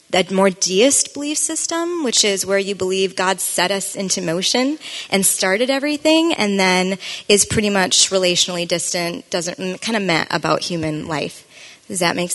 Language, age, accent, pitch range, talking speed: English, 20-39, American, 180-220 Hz, 170 wpm